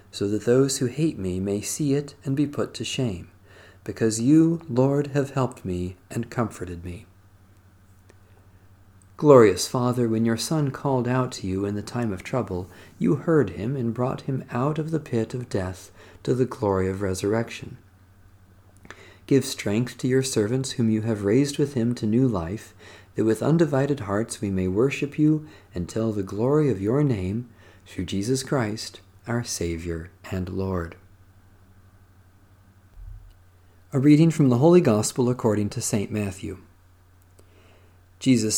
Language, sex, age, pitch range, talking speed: English, male, 40-59, 95-130 Hz, 155 wpm